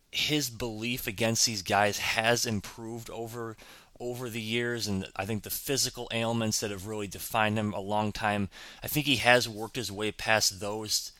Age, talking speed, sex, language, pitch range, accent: 30-49, 180 wpm, male, English, 100-120 Hz, American